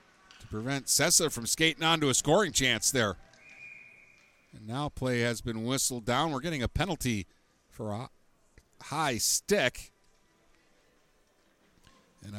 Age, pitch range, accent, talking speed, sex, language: 50-69, 140-180 Hz, American, 125 wpm, male, English